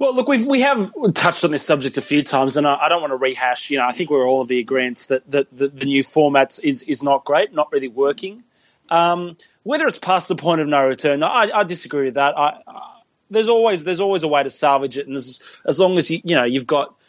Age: 20-39